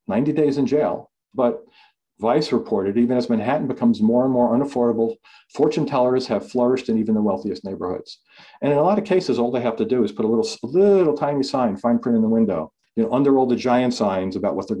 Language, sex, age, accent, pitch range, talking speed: English, male, 40-59, American, 115-140 Hz, 230 wpm